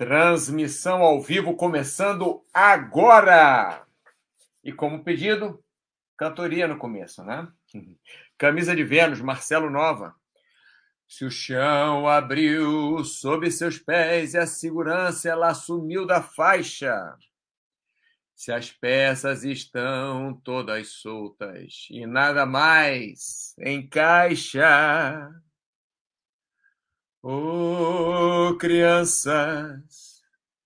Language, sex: Portuguese, male